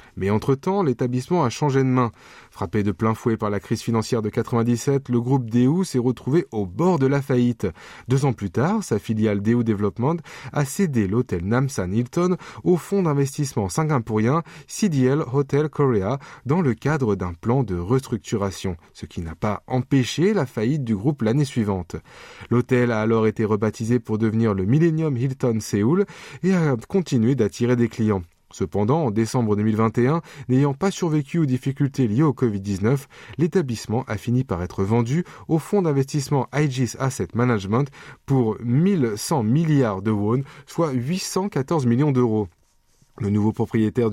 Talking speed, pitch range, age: 160 wpm, 110-150 Hz, 20-39